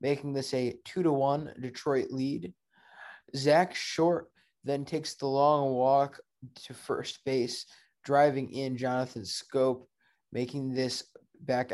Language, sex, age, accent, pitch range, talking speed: English, male, 20-39, American, 130-145 Hz, 120 wpm